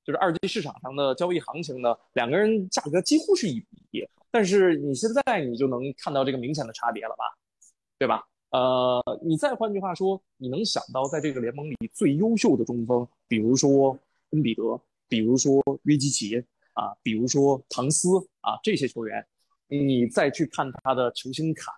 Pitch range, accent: 125-160 Hz, native